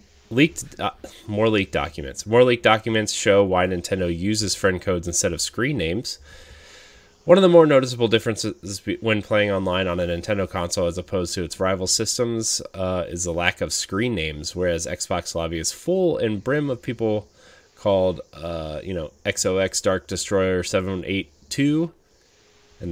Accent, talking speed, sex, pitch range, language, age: American, 170 wpm, male, 85-105 Hz, English, 30-49